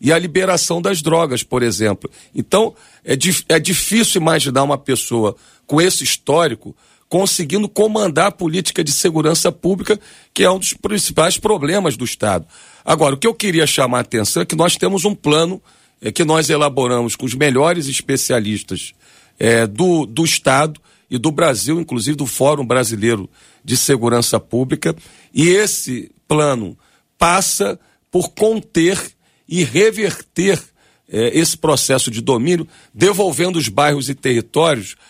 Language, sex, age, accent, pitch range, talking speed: Portuguese, male, 40-59, Brazilian, 130-175 Hz, 145 wpm